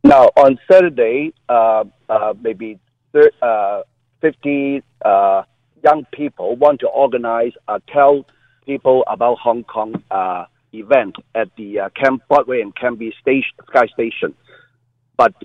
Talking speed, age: 130 wpm, 50-69